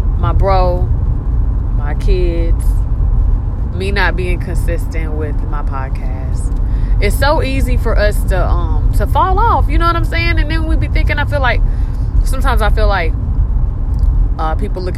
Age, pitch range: 20-39, 85-105 Hz